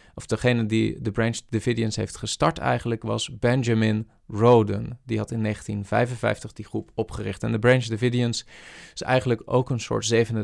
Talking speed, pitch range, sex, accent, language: 165 wpm, 110-125 Hz, male, Dutch, Dutch